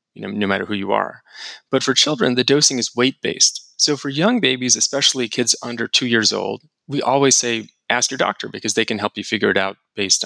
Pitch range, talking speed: 110-145 Hz, 230 wpm